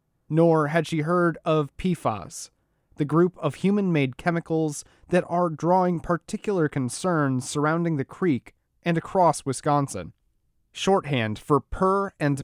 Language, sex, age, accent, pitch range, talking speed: English, male, 30-49, American, 140-170 Hz, 125 wpm